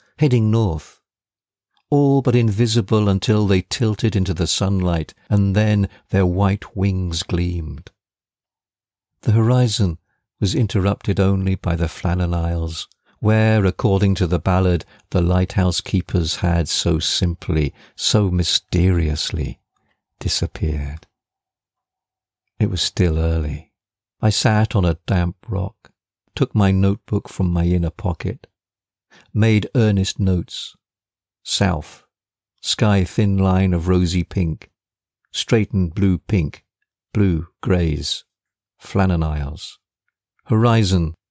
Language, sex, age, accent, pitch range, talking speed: English, male, 50-69, British, 85-105 Hz, 105 wpm